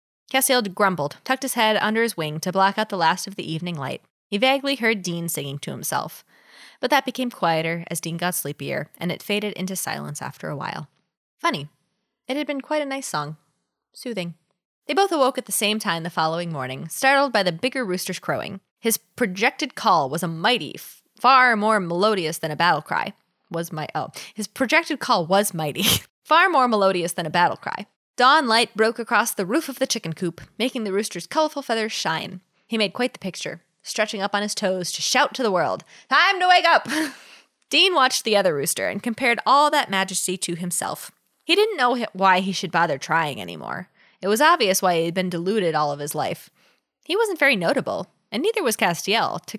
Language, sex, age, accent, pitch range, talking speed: English, female, 20-39, American, 175-255 Hz, 205 wpm